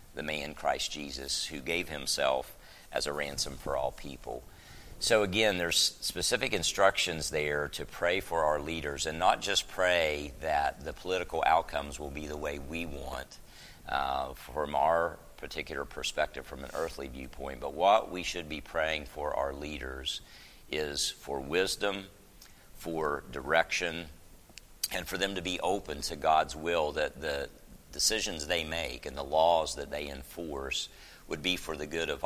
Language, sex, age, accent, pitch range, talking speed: English, male, 50-69, American, 70-85 Hz, 160 wpm